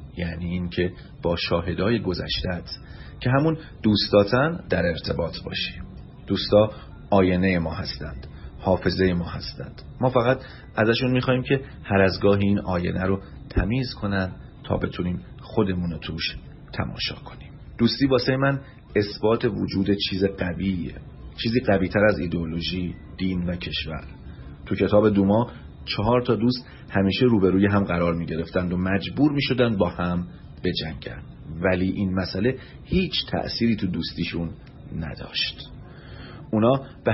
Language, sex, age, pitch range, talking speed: Persian, male, 30-49, 90-120 Hz, 130 wpm